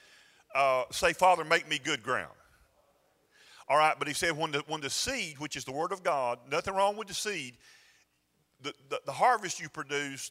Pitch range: 125-170 Hz